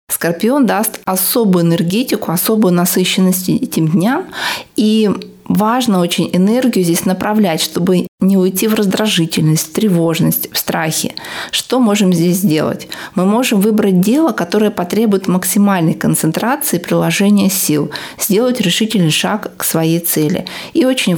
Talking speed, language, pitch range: 130 wpm, Russian, 170-210 Hz